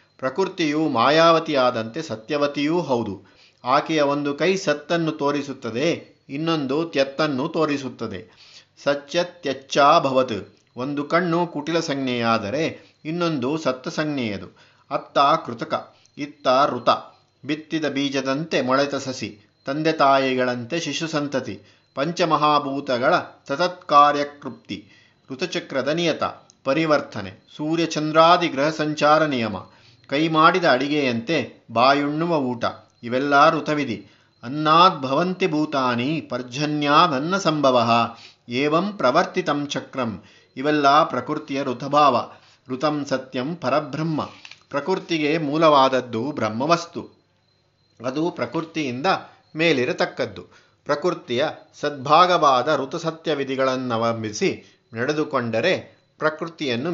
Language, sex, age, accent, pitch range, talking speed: Kannada, male, 50-69, native, 125-155 Hz, 75 wpm